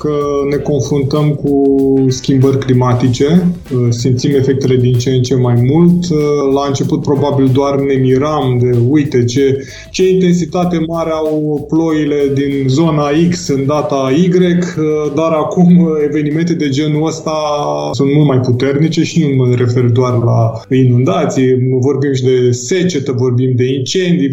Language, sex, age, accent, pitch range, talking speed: Romanian, male, 20-39, native, 130-165 Hz, 140 wpm